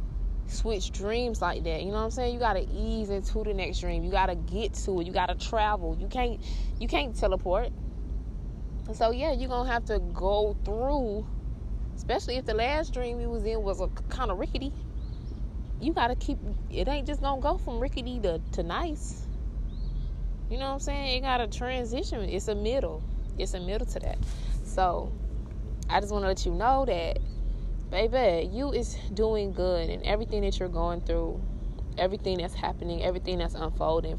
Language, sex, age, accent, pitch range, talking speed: English, female, 20-39, American, 175-230 Hz, 185 wpm